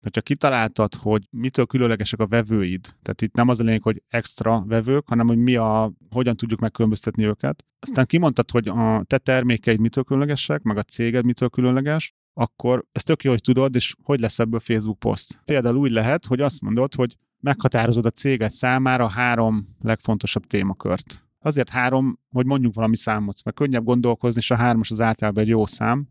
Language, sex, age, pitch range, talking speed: Hungarian, male, 30-49, 110-130 Hz, 190 wpm